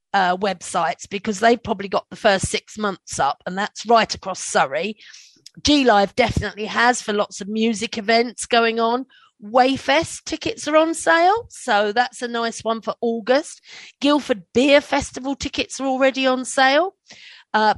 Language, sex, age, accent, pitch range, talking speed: English, female, 40-59, British, 215-270 Hz, 160 wpm